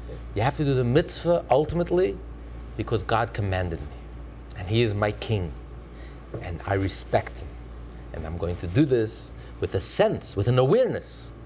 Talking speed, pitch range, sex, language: 170 wpm, 75-120 Hz, male, English